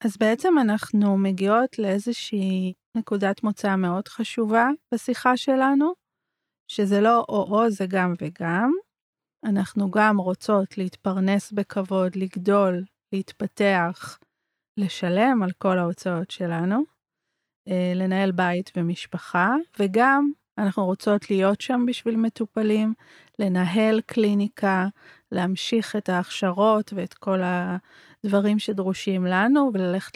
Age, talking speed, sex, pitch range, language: 30-49, 105 wpm, female, 185-220 Hz, Hebrew